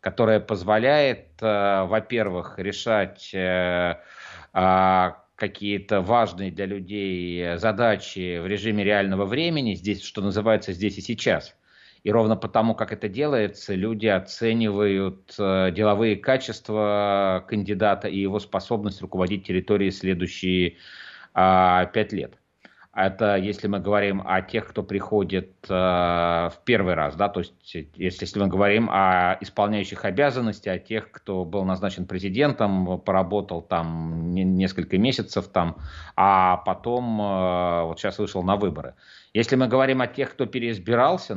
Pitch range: 90-110 Hz